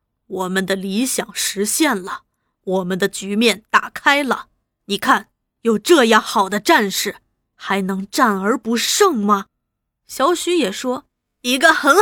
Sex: female